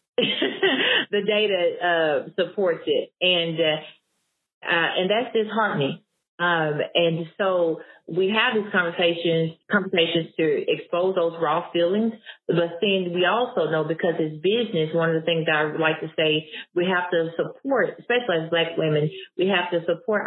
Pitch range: 155-185 Hz